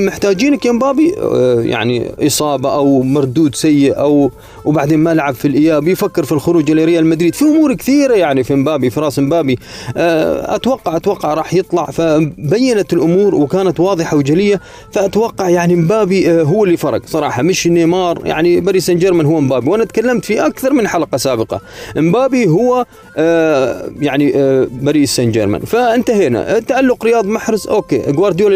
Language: Arabic